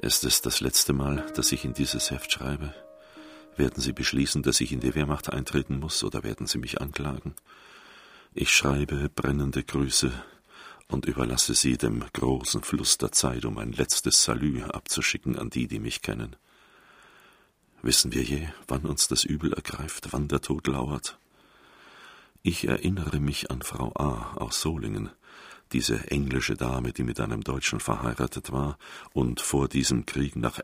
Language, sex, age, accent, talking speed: German, male, 50-69, German, 160 wpm